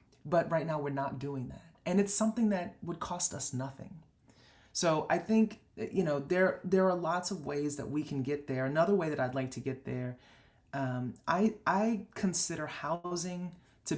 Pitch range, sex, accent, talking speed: 135-175 Hz, female, American, 195 wpm